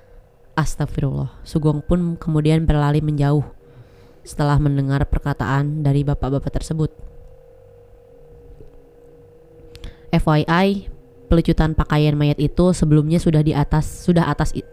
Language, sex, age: Indonesian, female, 20-39